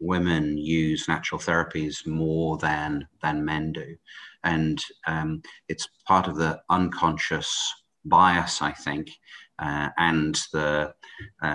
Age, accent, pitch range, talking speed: 40-59, British, 75-85 Hz, 120 wpm